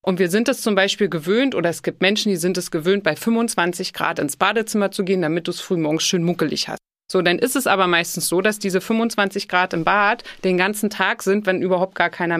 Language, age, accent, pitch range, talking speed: German, 30-49, German, 170-210 Hz, 240 wpm